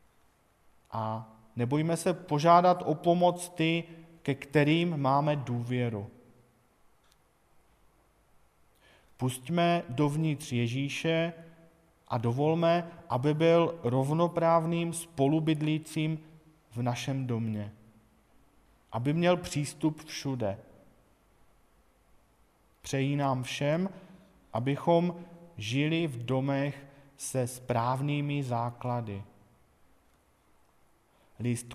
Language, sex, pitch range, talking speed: Czech, male, 120-165 Hz, 70 wpm